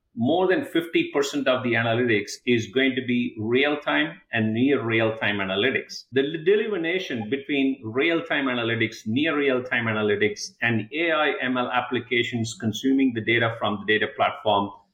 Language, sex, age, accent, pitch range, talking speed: English, male, 50-69, Indian, 115-150 Hz, 140 wpm